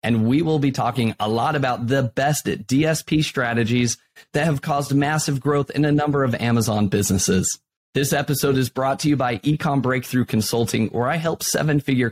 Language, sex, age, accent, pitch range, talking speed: English, male, 30-49, American, 105-135 Hz, 190 wpm